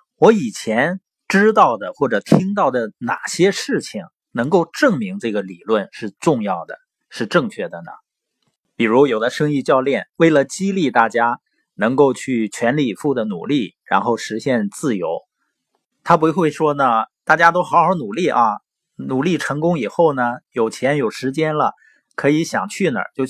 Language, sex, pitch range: Chinese, male, 135-195 Hz